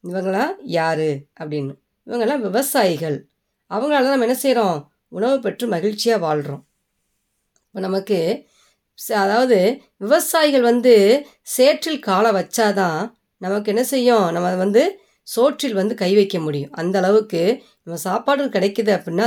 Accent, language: native, Tamil